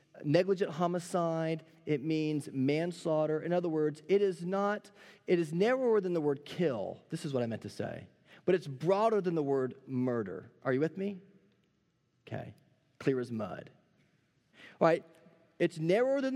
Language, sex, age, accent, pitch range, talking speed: English, male, 30-49, American, 145-190 Hz, 165 wpm